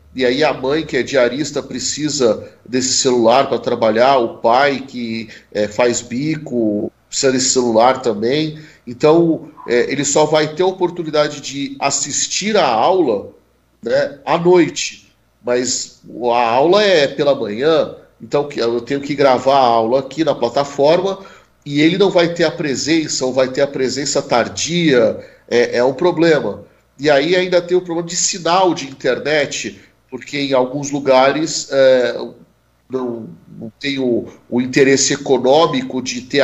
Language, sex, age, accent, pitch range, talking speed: Portuguese, male, 40-59, Brazilian, 130-170 Hz, 150 wpm